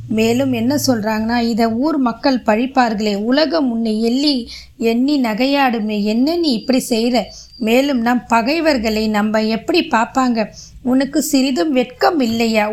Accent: native